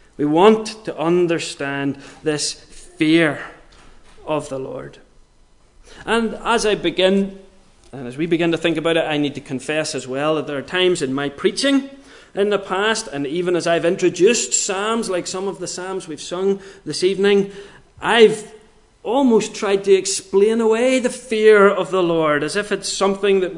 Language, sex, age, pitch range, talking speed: English, male, 30-49, 155-215 Hz, 175 wpm